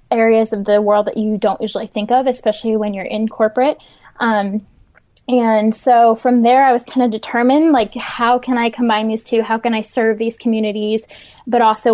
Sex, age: female, 10-29